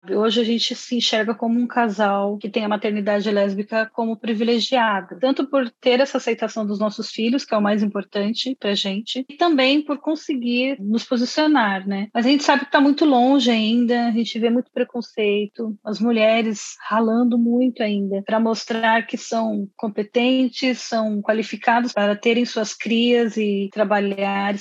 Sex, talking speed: female, 170 wpm